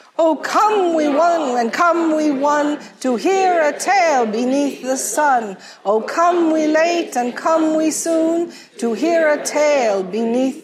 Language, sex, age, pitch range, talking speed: English, female, 50-69, 210-310 Hz, 160 wpm